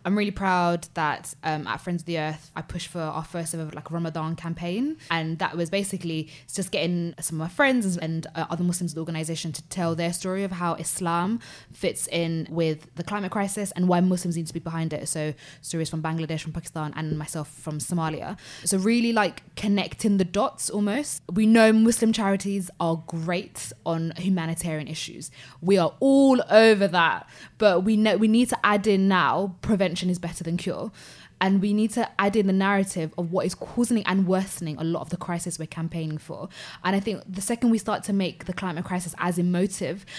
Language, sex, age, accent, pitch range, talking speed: English, female, 20-39, British, 165-195 Hz, 205 wpm